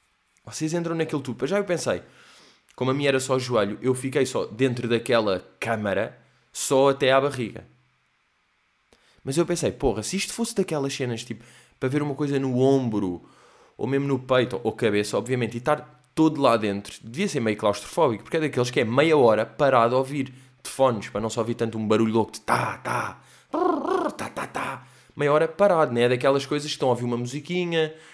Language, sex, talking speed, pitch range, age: Portuguese, male, 205 wpm, 115-140 Hz, 20-39